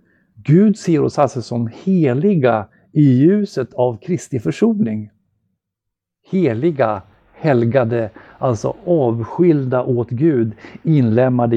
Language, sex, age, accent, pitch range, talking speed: Swedish, male, 50-69, native, 115-160 Hz, 95 wpm